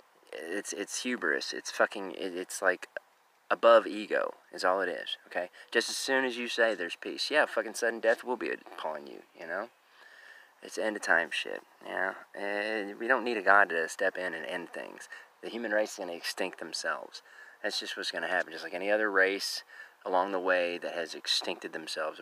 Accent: American